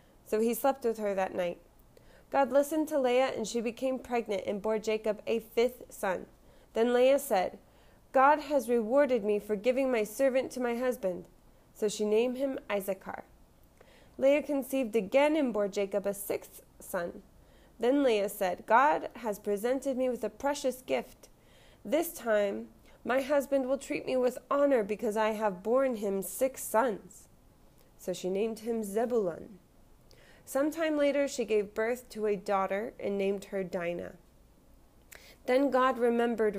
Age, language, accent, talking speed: 20-39, English, American, 155 wpm